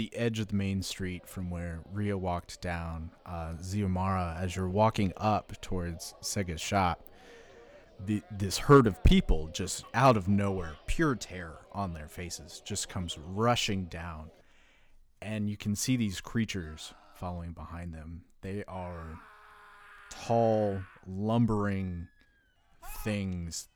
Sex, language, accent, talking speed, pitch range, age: male, English, American, 130 wpm, 85-105 Hz, 30-49